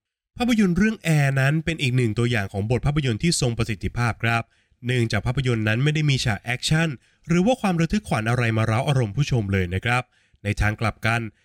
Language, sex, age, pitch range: Thai, male, 20-39, 110-150 Hz